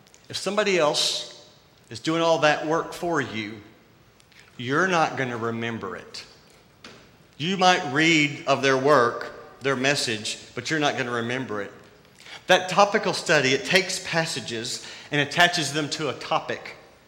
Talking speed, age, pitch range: 150 wpm, 40-59, 120-165 Hz